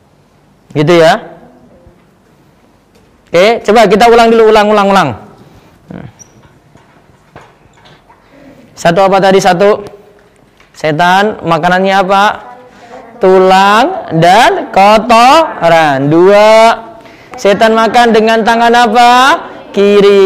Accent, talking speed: native, 80 wpm